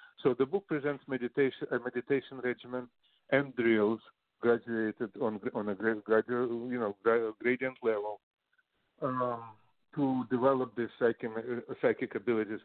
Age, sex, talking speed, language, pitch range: 50-69, male, 120 wpm, English, 110-135 Hz